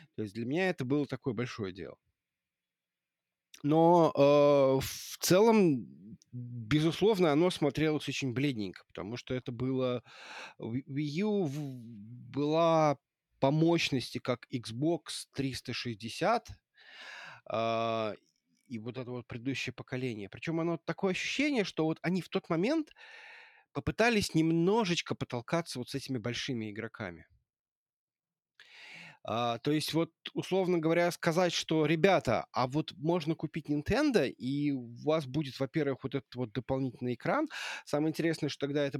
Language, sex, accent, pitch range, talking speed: Russian, male, native, 120-160 Hz, 125 wpm